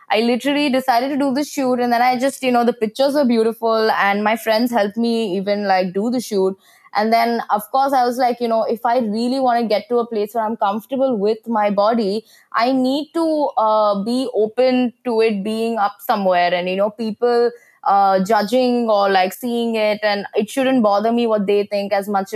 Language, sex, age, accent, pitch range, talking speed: English, female, 20-39, Indian, 195-245 Hz, 220 wpm